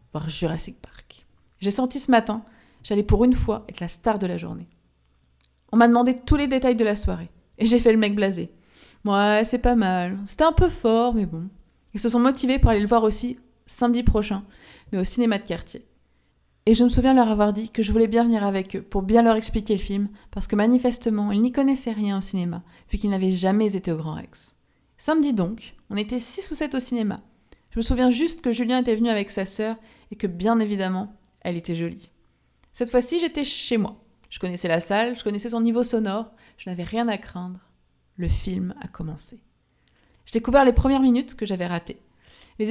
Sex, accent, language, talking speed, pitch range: female, French, French, 220 wpm, 190-240 Hz